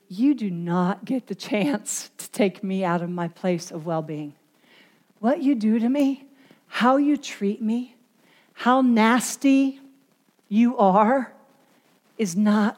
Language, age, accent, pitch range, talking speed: English, 50-69, American, 185-240 Hz, 140 wpm